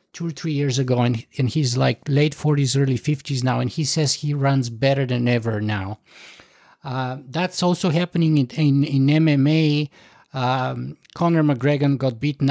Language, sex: English, male